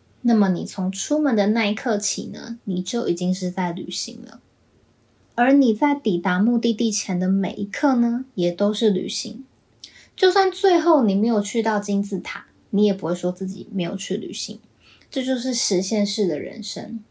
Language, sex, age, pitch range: Chinese, female, 20-39, 190-235 Hz